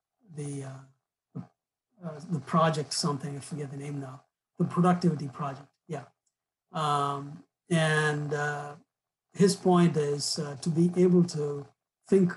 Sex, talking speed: male, 130 wpm